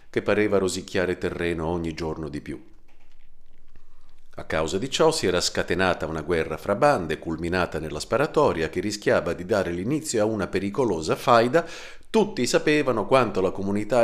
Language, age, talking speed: Italian, 50-69, 155 wpm